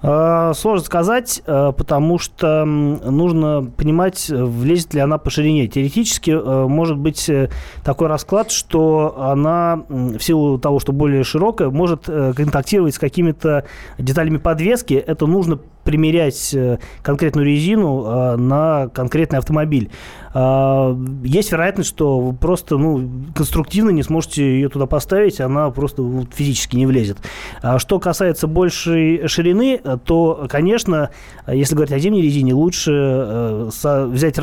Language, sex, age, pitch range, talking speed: Russian, male, 20-39, 135-165 Hz, 120 wpm